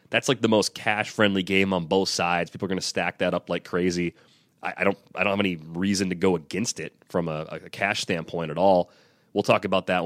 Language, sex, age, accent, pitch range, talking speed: English, male, 30-49, American, 95-110 Hz, 250 wpm